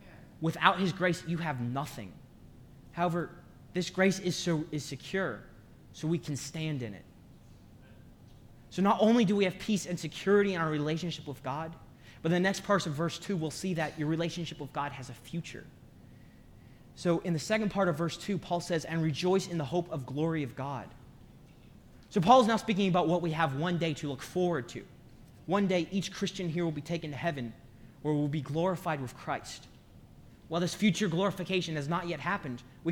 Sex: male